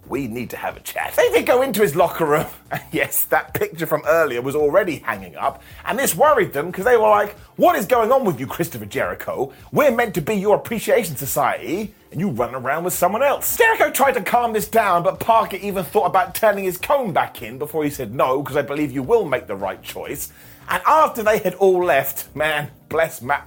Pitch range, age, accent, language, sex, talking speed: 160-235 Hz, 30-49, British, English, male, 235 wpm